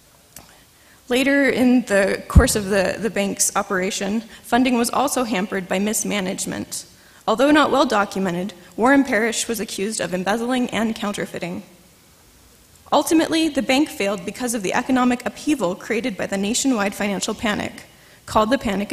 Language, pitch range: English, 200-265 Hz